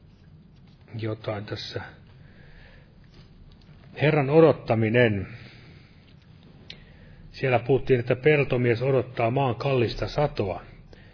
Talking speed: 65 wpm